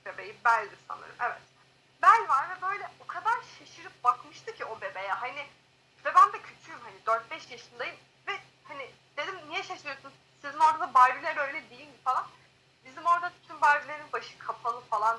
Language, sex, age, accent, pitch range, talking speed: Turkish, female, 30-49, native, 235-345 Hz, 165 wpm